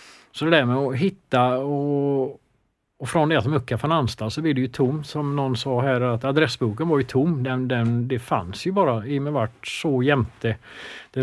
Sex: male